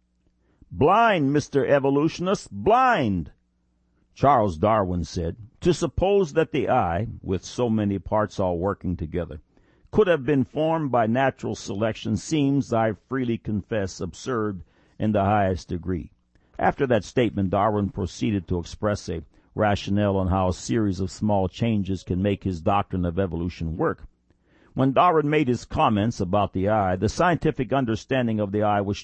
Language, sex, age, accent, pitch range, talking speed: English, male, 60-79, American, 95-125 Hz, 150 wpm